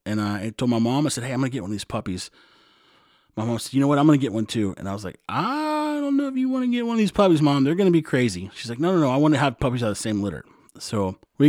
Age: 30-49